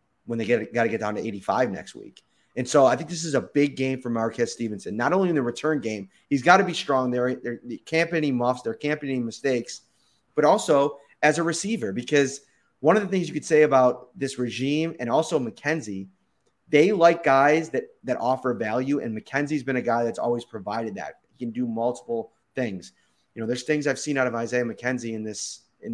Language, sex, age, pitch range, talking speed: English, male, 30-49, 115-145 Hz, 230 wpm